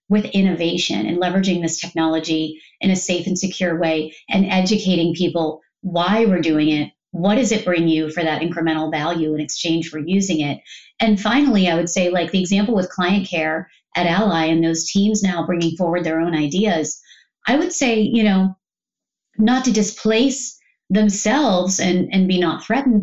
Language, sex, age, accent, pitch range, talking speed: English, female, 30-49, American, 170-210 Hz, 180 wpm